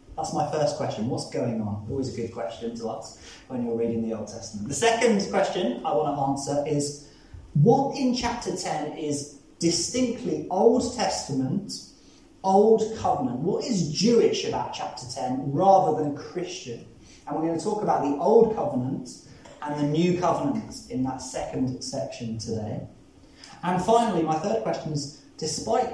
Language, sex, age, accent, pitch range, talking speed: English, male, 20-39, British, 120-175 Hz, 165 wpm